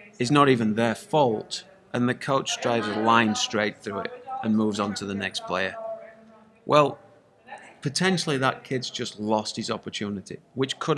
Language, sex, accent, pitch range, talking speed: English, male, British, 110-145 Hz, 170 wpm